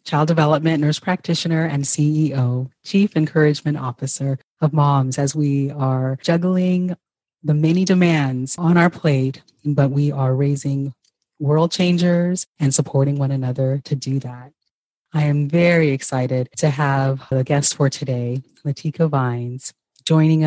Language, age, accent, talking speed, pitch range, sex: English, 30-49, American, 140 wpm, 135-160 Hz, female